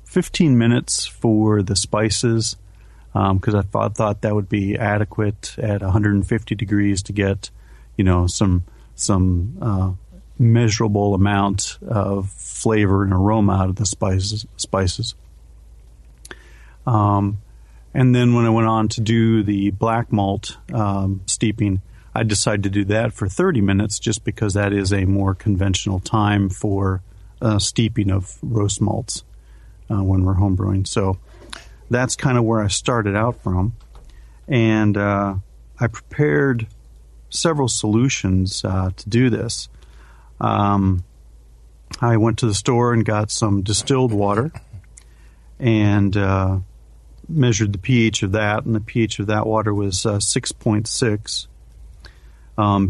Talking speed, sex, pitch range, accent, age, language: 135 wpm, male, 95-115 Hz, American, 40-59, English